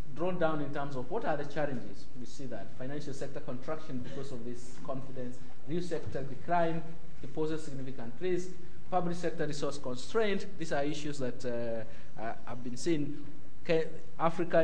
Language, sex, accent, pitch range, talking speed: English, male, South African, 125-155 Hz, 160 wpm